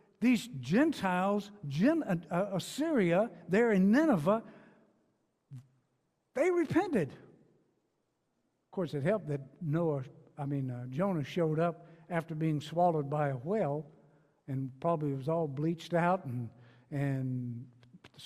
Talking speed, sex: 115 wpm, male